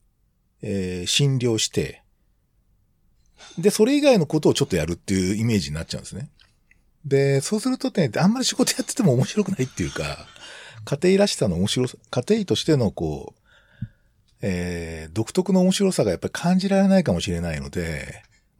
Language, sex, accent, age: Japanese, male, native, 50-69